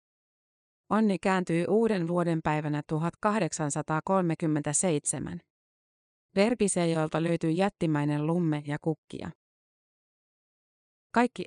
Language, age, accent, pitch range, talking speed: Finnish, 30-49, native, 155-190 Hz, 70 wpm